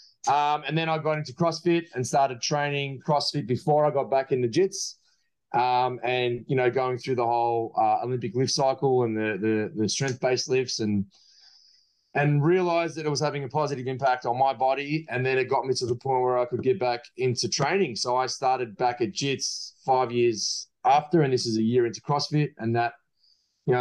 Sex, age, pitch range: male, 20-39, 120-145 Hz